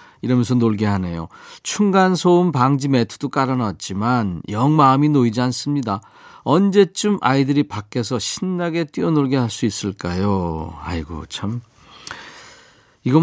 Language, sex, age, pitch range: Korean, male, 40-59, 105-150 Hz